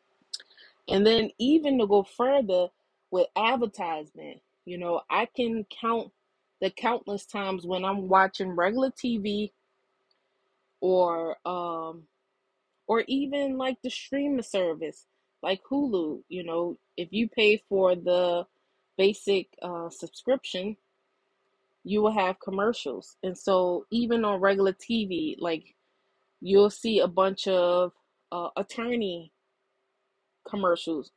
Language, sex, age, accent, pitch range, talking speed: English, female, 20-39, American, 175-210 Hz, 115 wpm